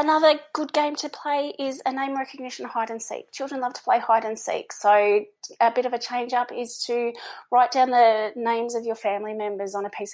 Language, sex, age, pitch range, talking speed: English, female, 30-49, 210-265 Hz, 230 wpm